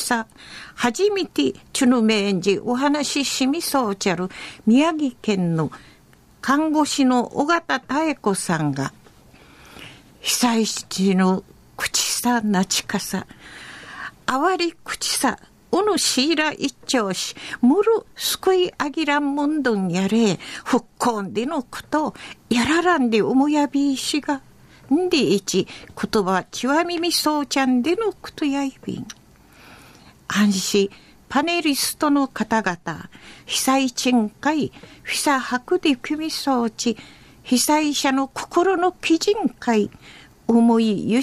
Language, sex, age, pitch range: Japanese, female, 50-69, 225-310 Hz